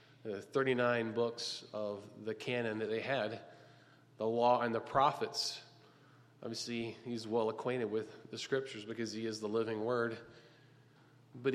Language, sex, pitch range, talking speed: English, male, 130-170 Hz, 145 wpm